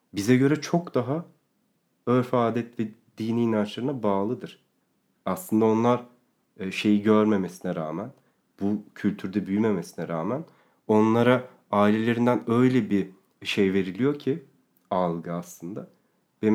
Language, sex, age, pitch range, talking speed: Turkish, male, 40-59, 100-125 Hz, 105 wpm